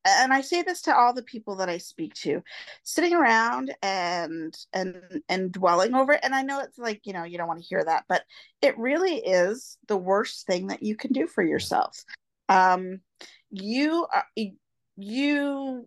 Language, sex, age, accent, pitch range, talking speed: English, female, 40-59, American, 180-265 Hz, 180 wpm